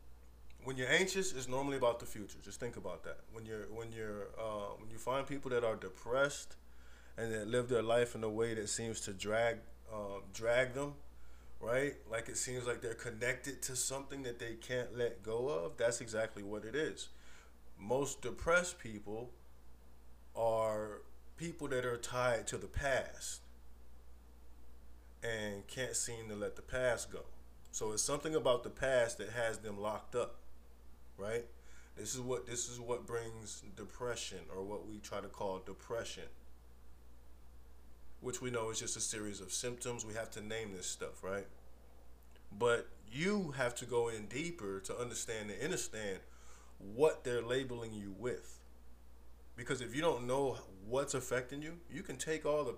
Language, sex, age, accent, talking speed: English, male, 20-39, American, 170 wpm